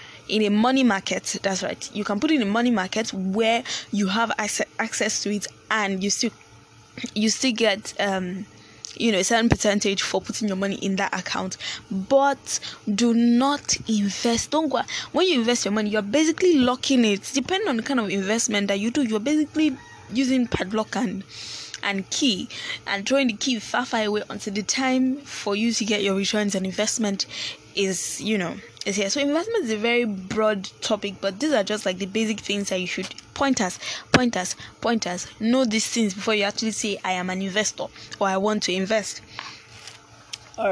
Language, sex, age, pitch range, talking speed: English, female, 10-29, 195-235 Hz, 200 wpm